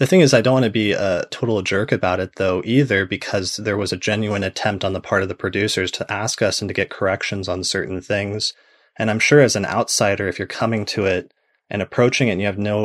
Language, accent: English, American